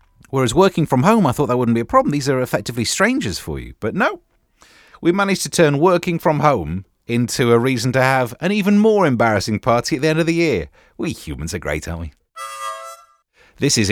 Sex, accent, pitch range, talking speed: male, British, 100-145 Hz, 215 wpm